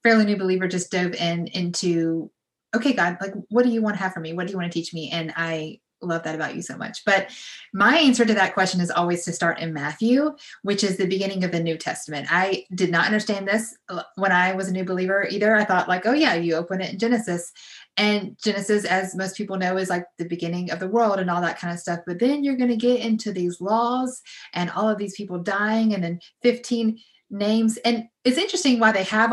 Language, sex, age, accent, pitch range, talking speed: English, female, 30-49, American, 175-230 Hz, 245 wpm